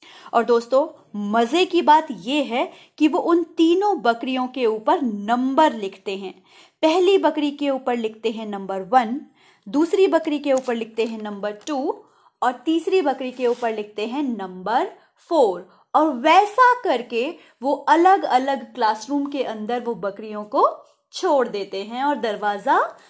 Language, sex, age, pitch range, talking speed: Hindi, female, 20-39, 225-340 Hz, 155 wpm